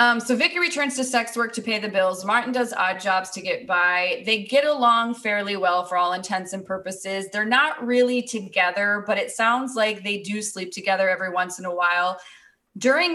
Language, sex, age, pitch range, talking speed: English, female, 20-39, 190-245 Hz, 210 wpm